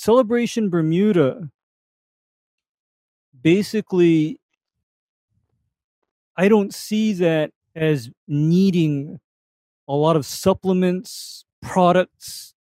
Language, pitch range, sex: English, 150-185 Hz, male